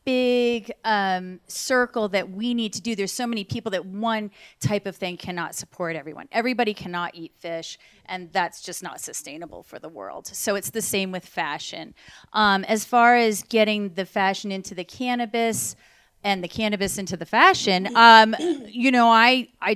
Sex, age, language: female, 30-49, English